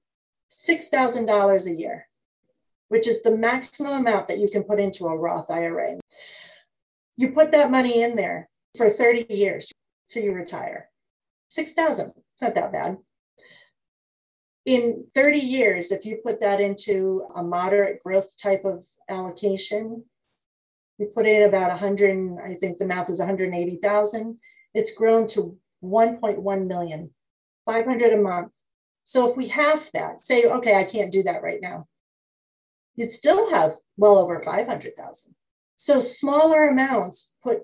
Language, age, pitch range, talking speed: English, 40-59, 195-235 Hz, 145 wpm